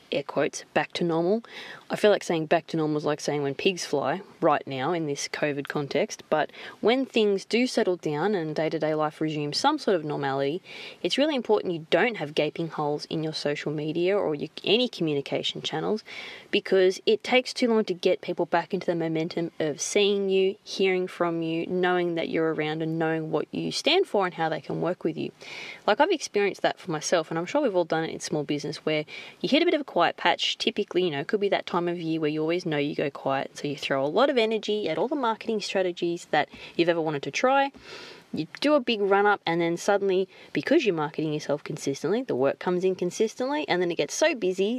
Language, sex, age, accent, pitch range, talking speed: English, female, 20-39, Australian, 155-210 Hz, 230 wpm